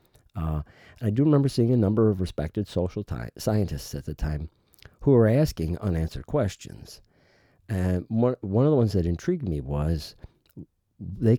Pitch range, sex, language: 85-120 Hz, male, English